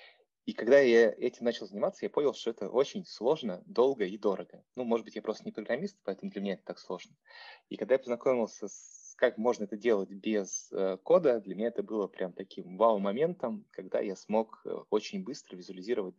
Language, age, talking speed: Russian, 20-39, 195 wpm